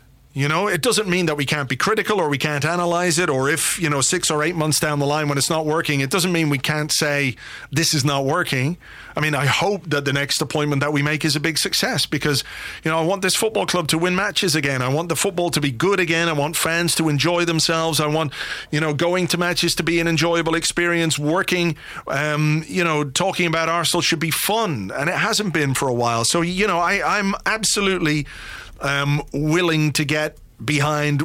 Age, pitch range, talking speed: 40-59, 135-170 Hz, 230 wpm